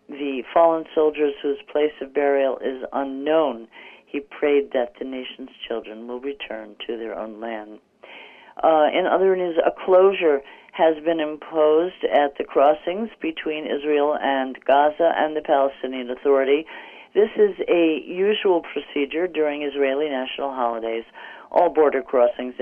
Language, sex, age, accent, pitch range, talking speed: English, female, 50-69, American, 135-170 Hz, 140 wpm